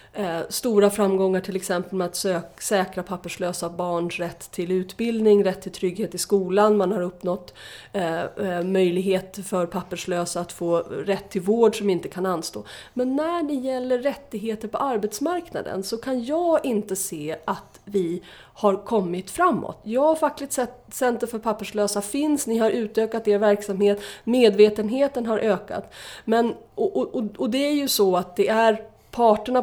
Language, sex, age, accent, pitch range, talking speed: Swedish, female, 30-49, native, 180-225 Hz, 150 wpm